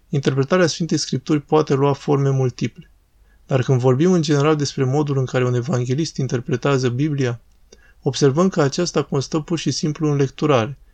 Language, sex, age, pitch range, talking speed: Romanian, male, 20-39, 130-155 Hz, 160 wpm